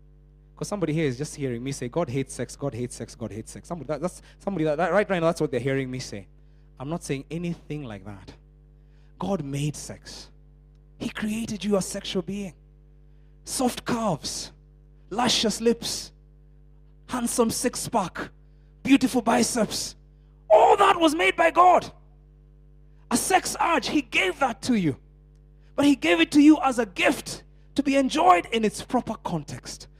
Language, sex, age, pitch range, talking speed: English, male, 30-49, 150-230 Hz, 165 wpm